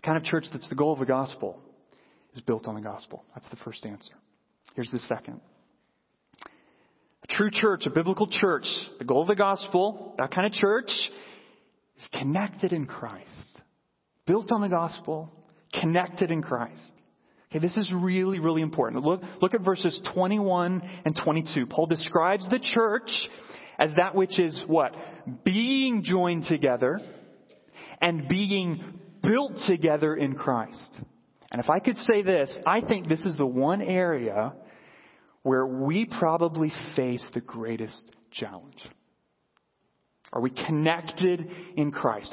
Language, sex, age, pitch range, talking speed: English, male, 30-49, 155-200 Hz, 145 wpm